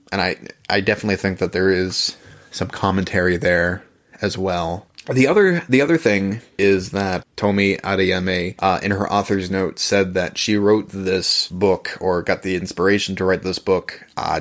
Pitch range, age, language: 95-100 Hz, 20-39, English